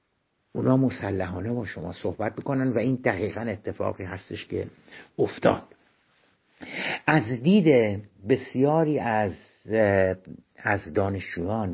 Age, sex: 60-79, male